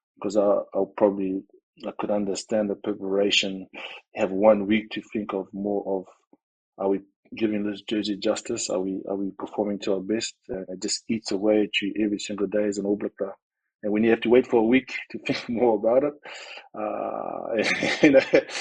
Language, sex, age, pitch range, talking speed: English, male, 20-39, 100-115 Hz, 185 wpm